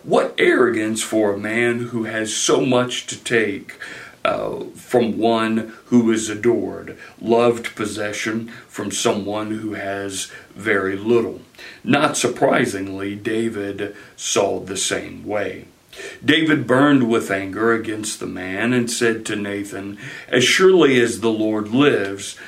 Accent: American